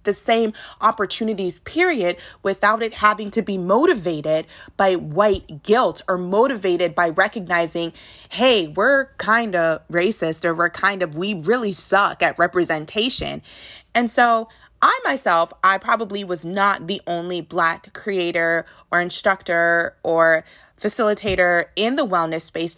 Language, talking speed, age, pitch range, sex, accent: English, 135 wpm, 20-39, 175-225 Hz, female, American